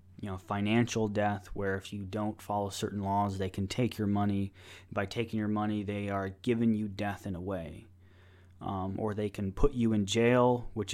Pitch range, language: 95-110 Hz, English